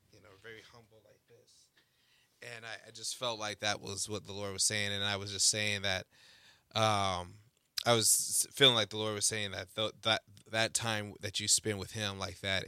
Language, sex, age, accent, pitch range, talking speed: English, male, 20-39, American, 95-115 Hz, 205 wpm